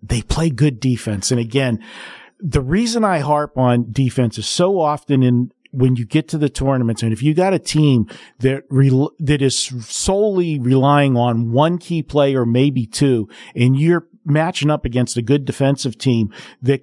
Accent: American